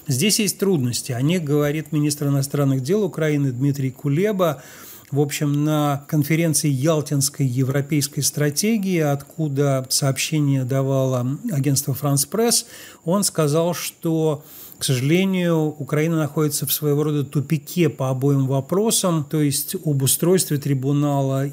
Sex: male